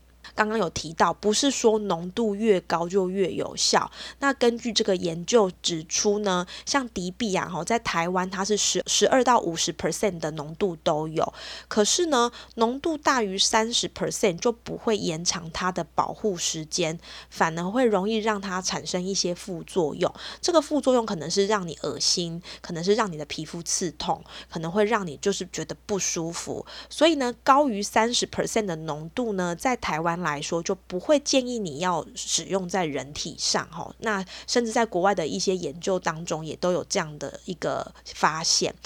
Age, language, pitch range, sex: 20-39, Chinese, 170-225 Hz, female